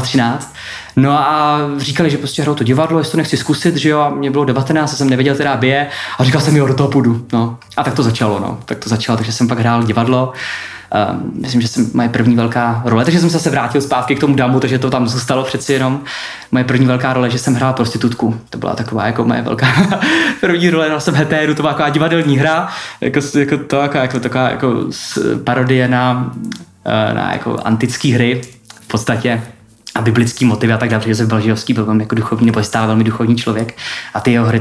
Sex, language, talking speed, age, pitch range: male, Czech, 225 wpm, 20-39, 115-140 Hz